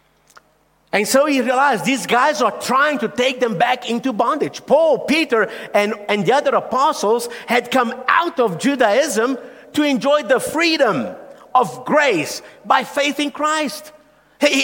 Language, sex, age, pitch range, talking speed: English, male, 50-69, 220-290 Hz, 150 wpm